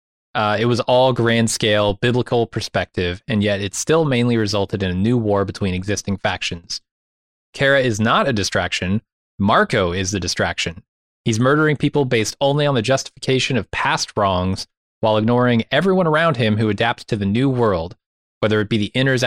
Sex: male